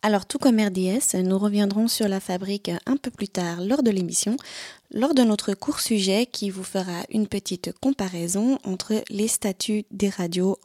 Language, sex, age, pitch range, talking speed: German, female, 20-39, 200-240 Hz, 180 wpm